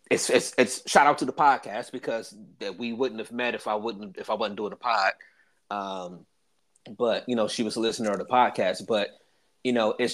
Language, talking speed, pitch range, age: English, 225 wpm, 105-125 Hz, 30-49